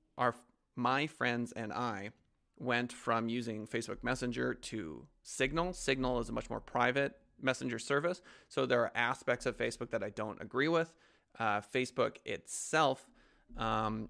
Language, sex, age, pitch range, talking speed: English, male, 30-49, 115-135 Hz, 150 wpm